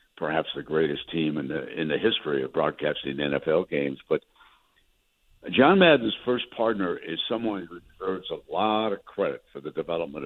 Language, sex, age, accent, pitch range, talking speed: English, male, 60-79, American, 85-110 Hz, 170 wpm